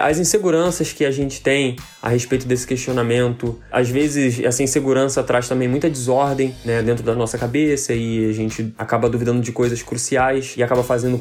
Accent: Brazilian